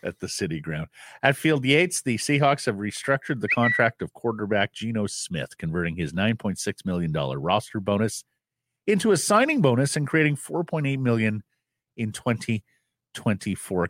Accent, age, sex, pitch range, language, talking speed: American, 50-69, male, 95-135 Hz, English, 145 wpm